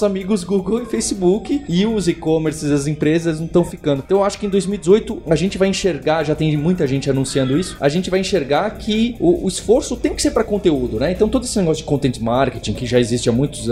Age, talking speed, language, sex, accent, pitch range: 20-39, 235 wpm, Portuguese, male, Brazilian, 150-200 Hz